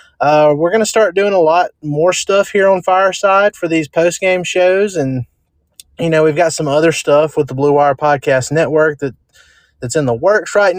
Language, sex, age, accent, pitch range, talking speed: English, male, 20-39, American, 130-165 Hz, 205 wpm